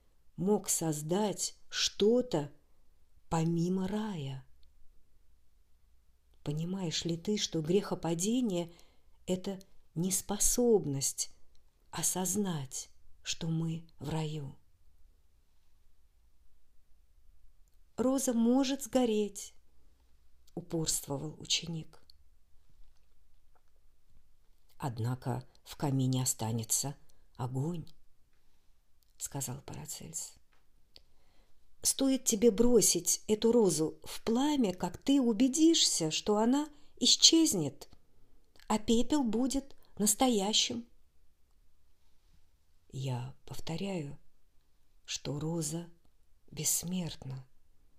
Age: 50-69